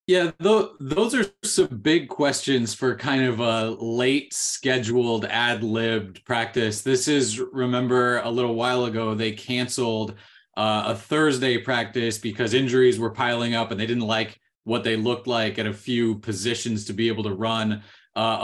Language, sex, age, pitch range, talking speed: English, male, 20-39, 105-125 Hz, 165 wpm